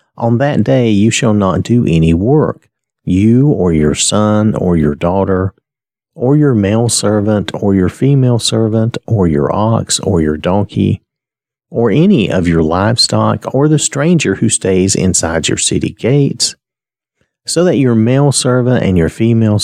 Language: English